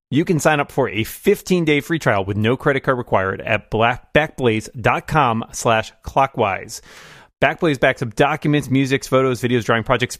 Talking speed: 160 wpm